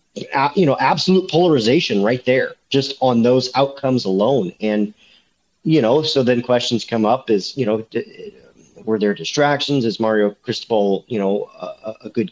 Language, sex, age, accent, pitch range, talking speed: English, male, 40-59, American, 105-125 Hz, 160 wpm